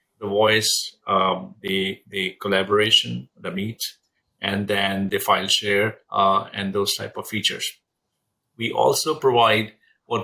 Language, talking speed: English, 135 wpm